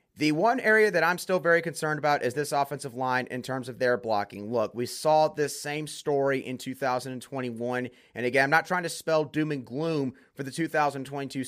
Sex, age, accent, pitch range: male, 30-49, American, 125-160 Hz